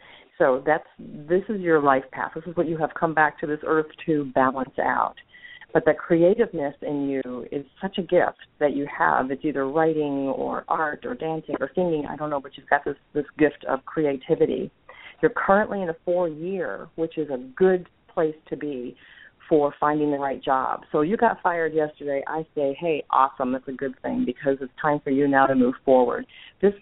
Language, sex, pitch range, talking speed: English, female, 140-170 Hz, 205 wpm